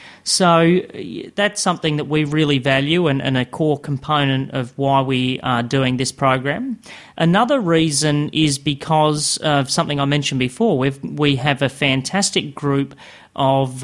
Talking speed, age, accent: 150 wpm, 30-49, Australian